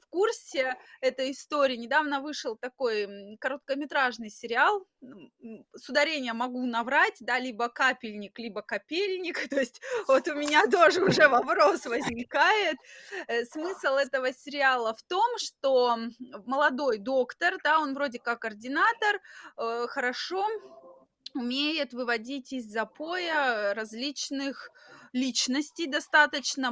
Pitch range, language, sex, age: 235-300 Hz, Russian, female, 20-39